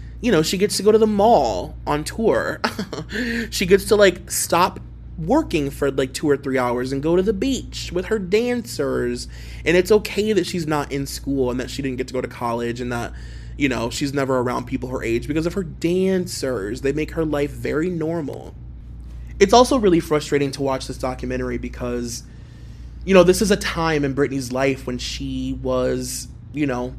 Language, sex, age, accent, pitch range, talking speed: English, male, 20-39, American, 120-160 Hz, 200 wpm